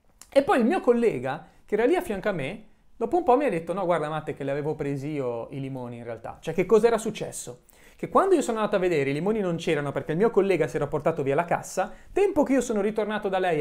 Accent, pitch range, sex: native, 145-210 Hz, male